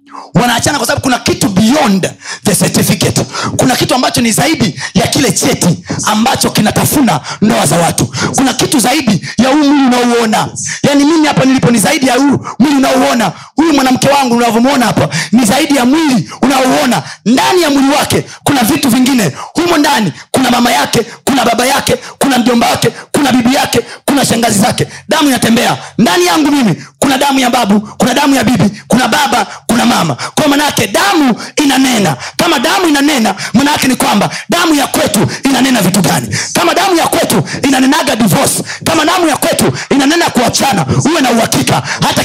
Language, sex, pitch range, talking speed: Swahili, male, 235-285 Hz, 170 wpm